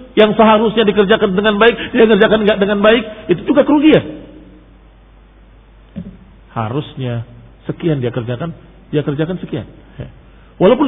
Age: 50-69